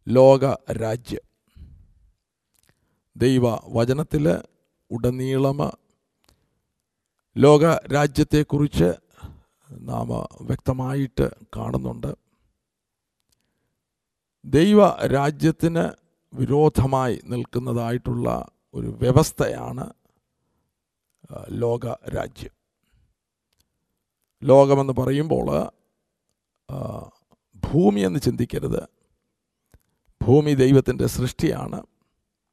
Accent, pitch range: native, 125-160 Hz